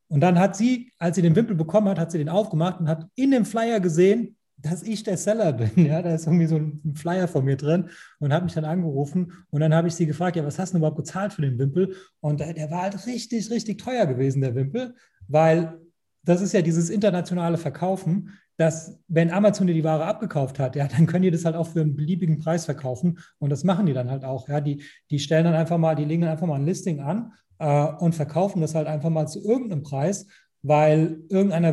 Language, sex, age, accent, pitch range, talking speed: German, male, 30-49, German, 150-180 Hz, 240 wpm